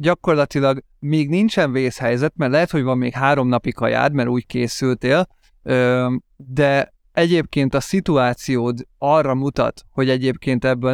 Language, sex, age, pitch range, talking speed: Hungarian, male, 30-49, 125-145 Hz, 130 wpm